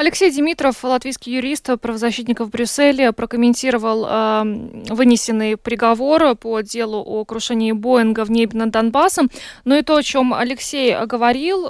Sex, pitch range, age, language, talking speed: female, 215-250 Hz, 20-39, Russian, 140 wpm